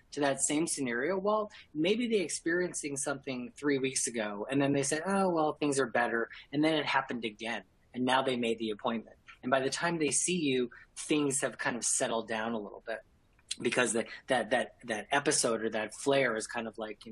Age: 30-49